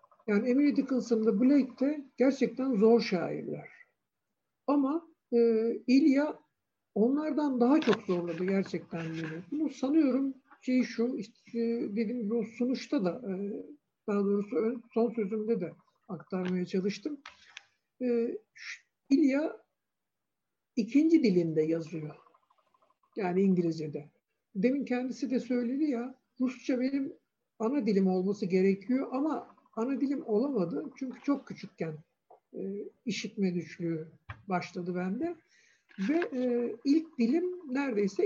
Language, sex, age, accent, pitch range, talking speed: Turkish, male, 60-79, native, 195-275 Hz, 110 wpm